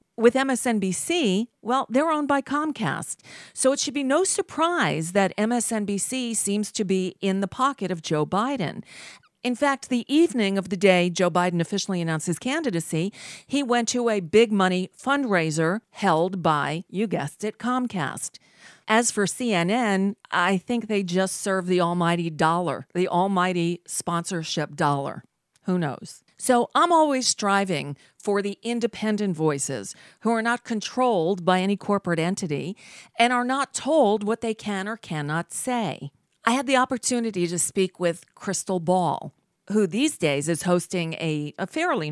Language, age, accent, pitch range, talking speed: English, 40-59, American, 175-235 Hz, 155 wpm